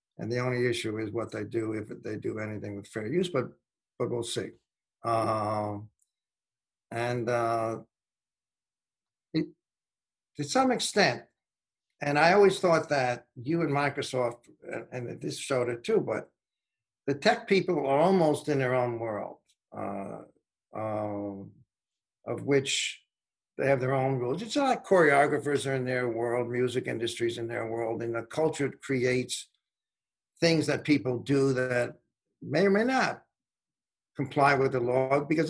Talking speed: 150 wpm